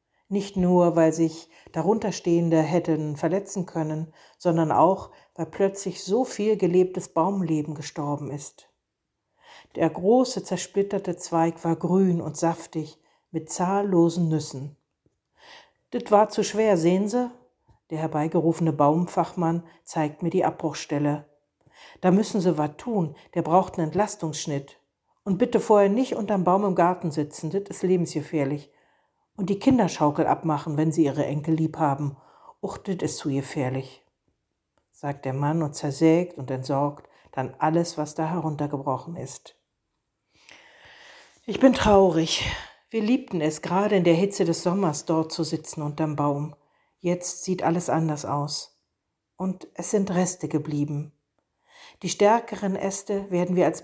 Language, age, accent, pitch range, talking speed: German, 60-79, German, 150-190 Hz, 135 wpm